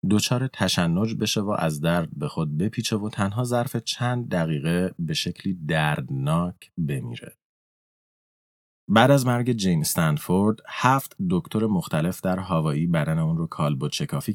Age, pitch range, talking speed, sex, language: 30-49, 90-125 Hz, 140 wpm, male, Persian